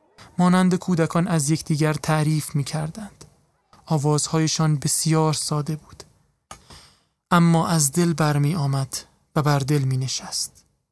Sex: male